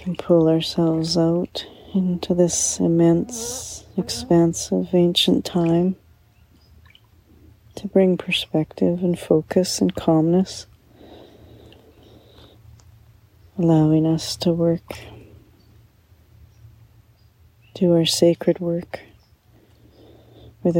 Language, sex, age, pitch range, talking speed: English, female, 40-59, 110-175 Hz, 75 wpm